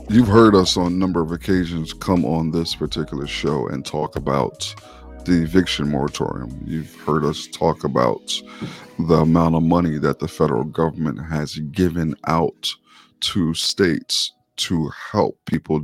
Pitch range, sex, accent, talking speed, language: 80-100 Hz, male, American, 150 wpm, English